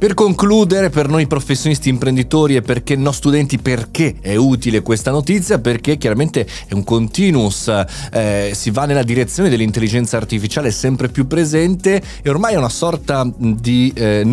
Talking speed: 155 wpm